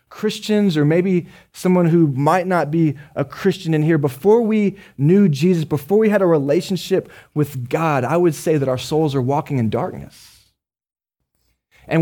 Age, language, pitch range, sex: 20-39, English, 140-185 Hz, male